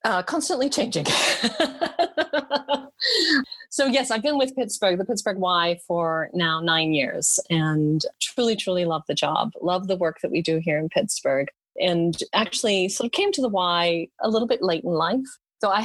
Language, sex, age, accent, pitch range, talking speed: English, female, 30-49, American, 170-250 Hz, 180 wpm